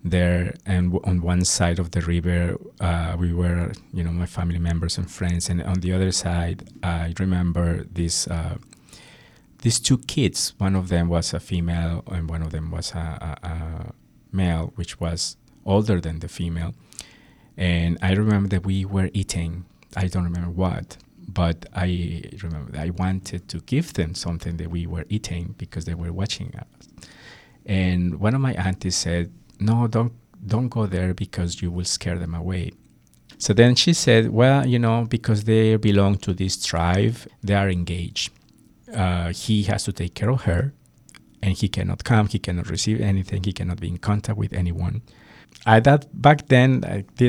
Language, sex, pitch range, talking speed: English, male, 85-105 Hz, 180 wpm